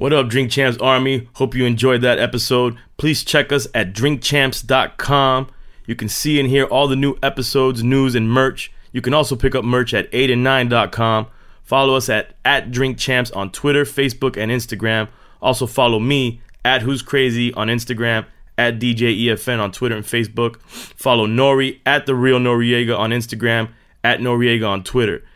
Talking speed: 170 wpm